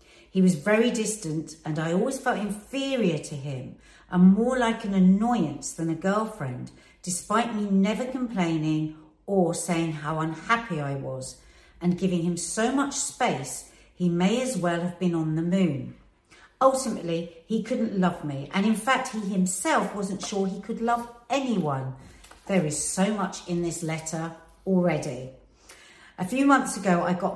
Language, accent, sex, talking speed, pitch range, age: English, British, female, 160 wpm, 155-215 Hz, 50-69